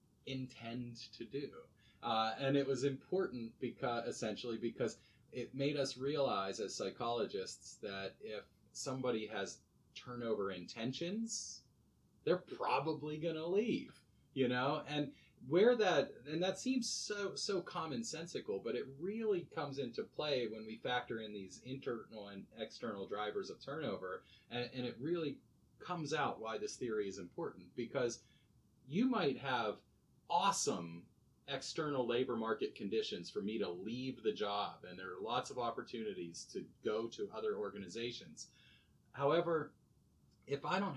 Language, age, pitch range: English, 30-49, 125-205 Hz